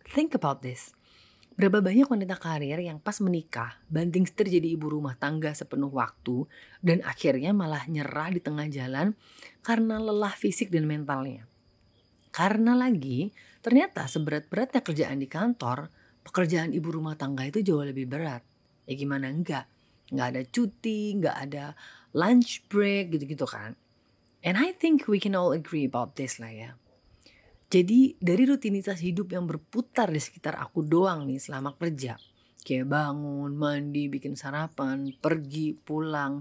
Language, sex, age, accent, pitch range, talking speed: Indonesian, female, 30-49, native, 135-180 Hz, 145 wpm